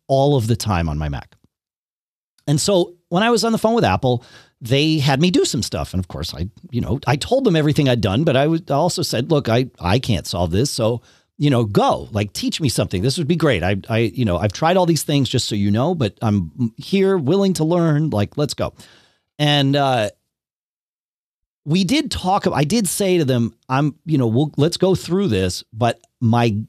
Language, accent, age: English, American, 40-59